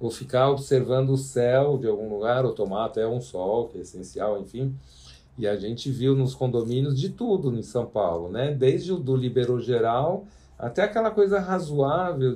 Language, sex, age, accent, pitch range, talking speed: Portuguese, male, 50-69, Brazilian, 115-155 Hz, 185 wpm